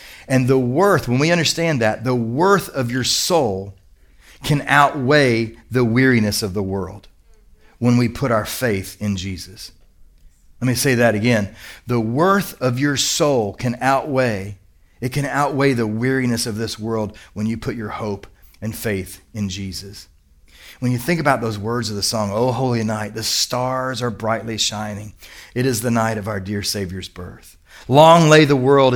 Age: 40-59